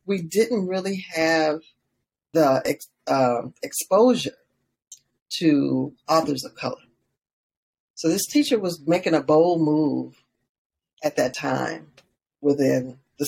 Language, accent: English, American